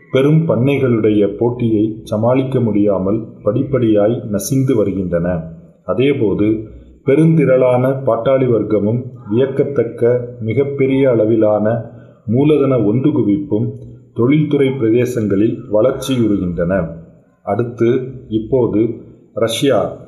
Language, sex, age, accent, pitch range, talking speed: Tamil, male, 30-49, native, 105-130 Hz, 70 wpm